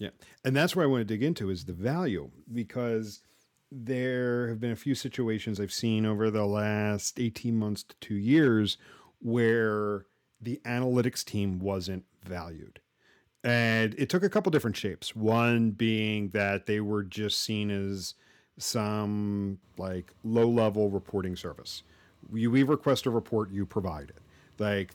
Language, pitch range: English, 95-120 Hz